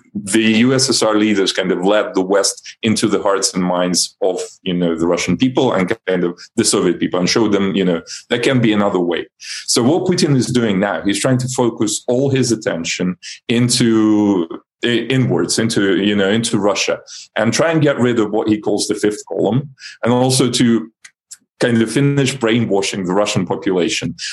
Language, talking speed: English, 190 wpm